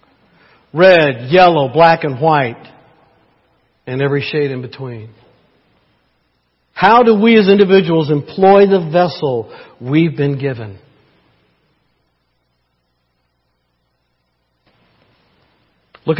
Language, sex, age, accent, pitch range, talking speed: English, male, 60-79, American, 130-200 Hz, 80 wpm